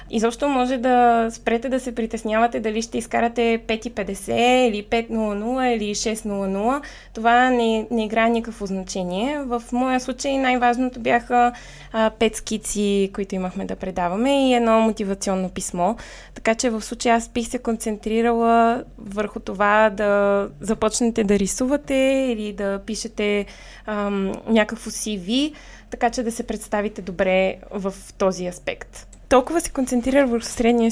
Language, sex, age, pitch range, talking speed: Bulgarian, female, 20-39, 215-255 Hz, 140 wpm